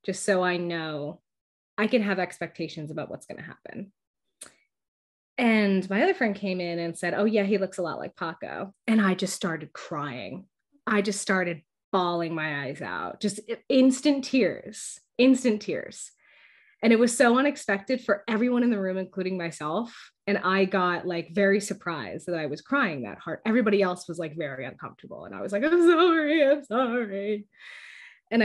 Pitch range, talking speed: 185-245 Hz, 180 wpm